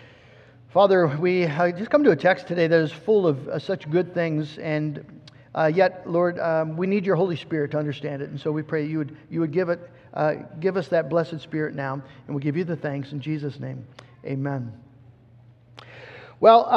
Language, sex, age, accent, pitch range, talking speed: English, male, 50-69, American, 160-220 Hz, 210 wpm